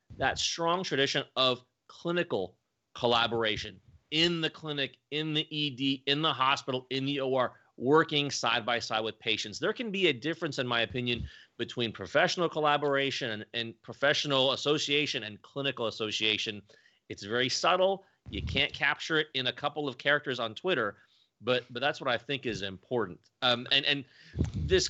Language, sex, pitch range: English, male, 120-145 Hz